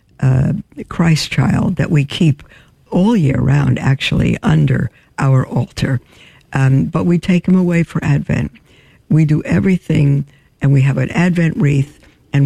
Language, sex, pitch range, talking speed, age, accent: English, female, 130-150 Hz, 150 wpm, 60-79, American